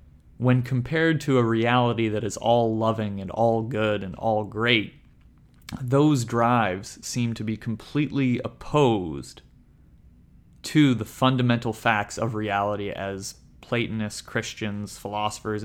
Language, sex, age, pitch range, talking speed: English, male, 30-49, 105-125 Hz, 110 wpm